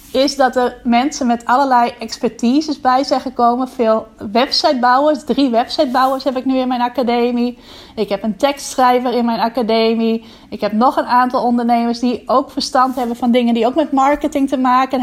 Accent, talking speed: Dutch, 180 wpm